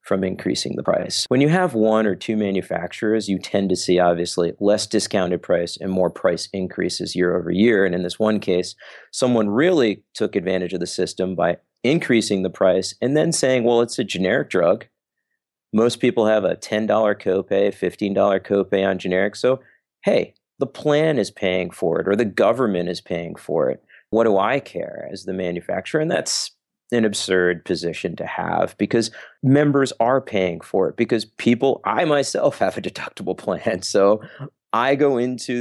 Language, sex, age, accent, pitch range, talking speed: English, male, 40-59, American, 95-120 Hz, 180 wpm